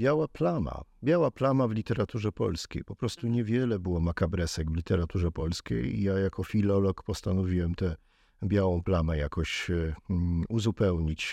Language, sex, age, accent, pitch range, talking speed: Polish, male, 40-59, native, 95-115 Hz, 130 wpm